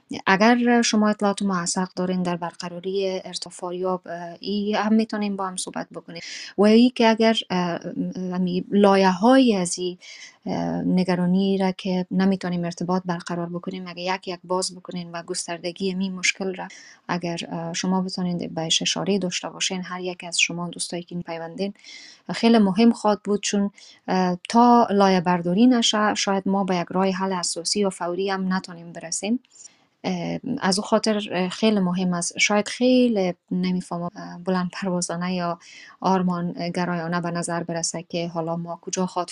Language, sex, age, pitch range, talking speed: Persian, female, 20-39, 175-200 Hz, 145 wpm